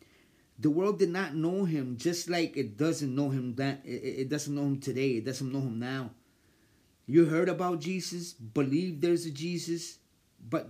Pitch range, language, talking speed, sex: 125-170 Hz, Spanish, 185 wpm, male